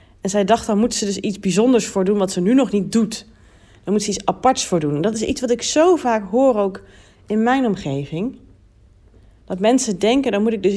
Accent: Dutch